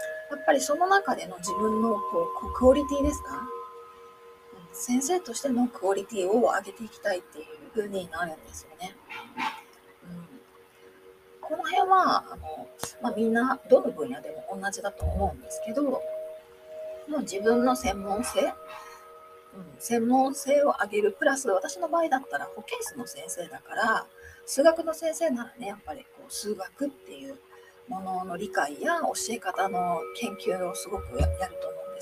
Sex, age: female, 40-59